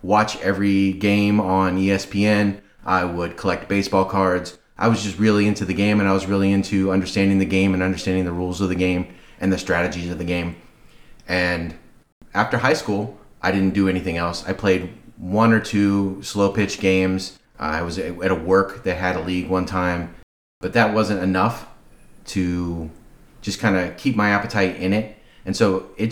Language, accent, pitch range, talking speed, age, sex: English, American, 90-105 Hz, 190 wpm, 30-49, male